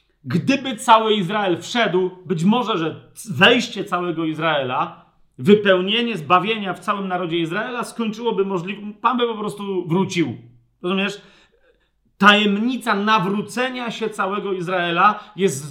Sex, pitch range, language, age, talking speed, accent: male, 185-230 Hz, Polish, 40-59, 115 wpm, native